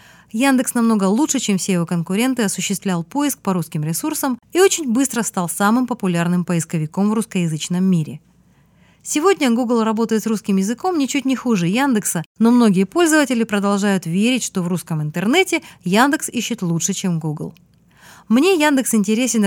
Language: Russian